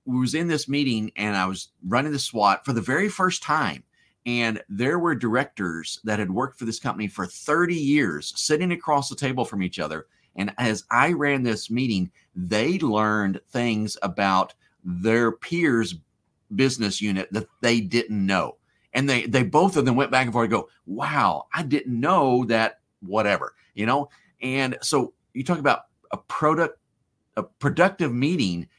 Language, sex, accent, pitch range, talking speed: English, male, American, 105-135 Hz, 175 wpm